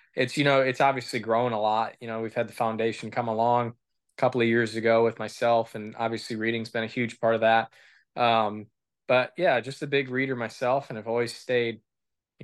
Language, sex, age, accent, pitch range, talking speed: English, male, 20-39, American, 110-120 Hz, 220 wpm